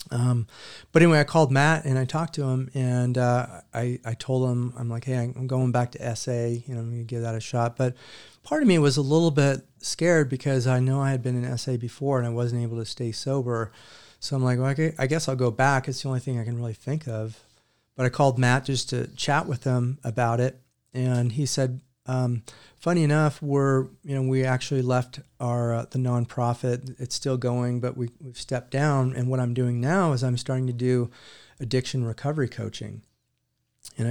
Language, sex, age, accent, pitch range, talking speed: English, male, 40-59, American, 120-135 Hz, 220 wpm